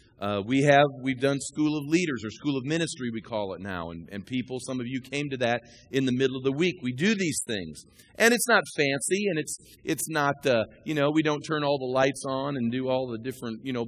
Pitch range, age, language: 120-160 Hz, 40-59, English